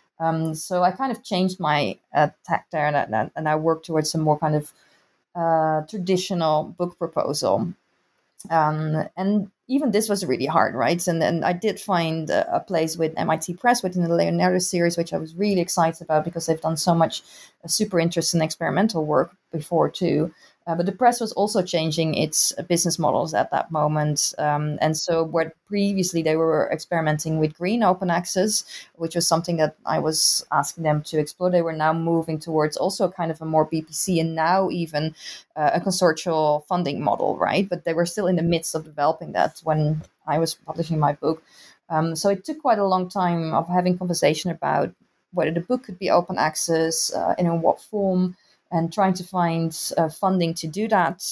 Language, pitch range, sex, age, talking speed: English, 155-180 Hz, female, 20-39, 195 wpm